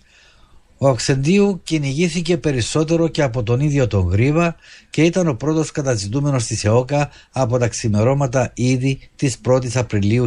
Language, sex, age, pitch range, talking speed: Greek, male, 50-69, 110-145 Hz, 140 wpm